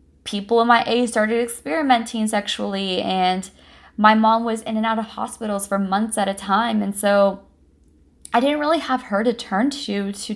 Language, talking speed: English, 185 wpm